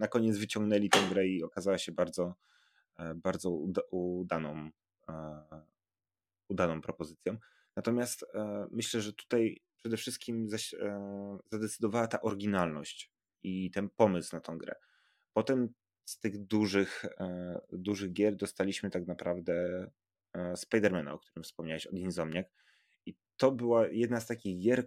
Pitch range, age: 90-105 Hz, 30-49